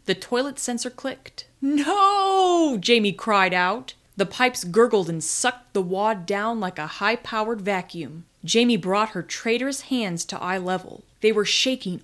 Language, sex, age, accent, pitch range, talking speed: English, female, 30-49, American, 185-255 Hz, 155 wpm